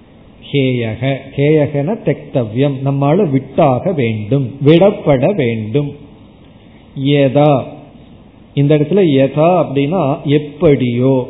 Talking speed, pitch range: 60 wpm, 135-170 Hz